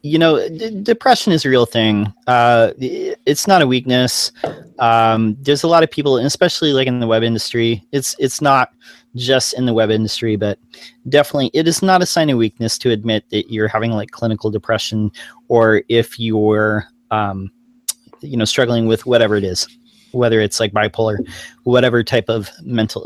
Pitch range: 110-135 Hz